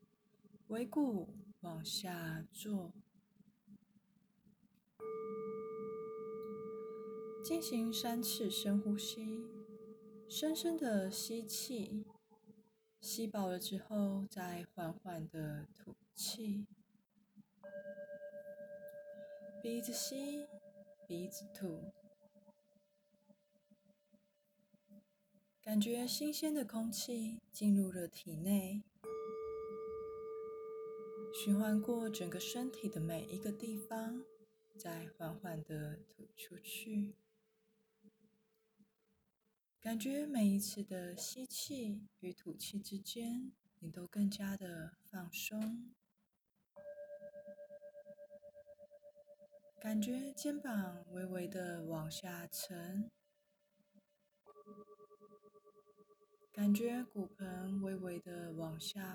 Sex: female